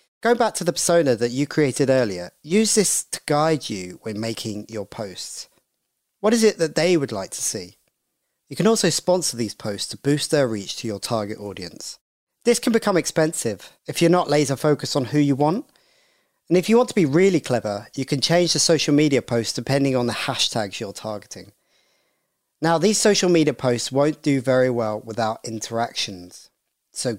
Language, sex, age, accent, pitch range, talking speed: English, male, 40-59, British, 115-160 Hz, 190 wpm